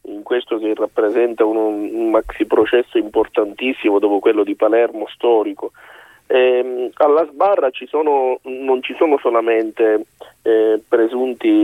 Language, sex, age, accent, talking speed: Italian, male, 40-59, native, 130 wpm